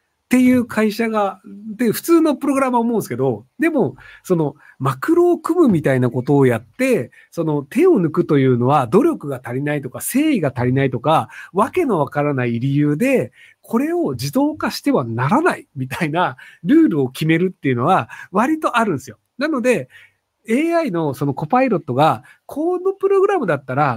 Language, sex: Japanese, male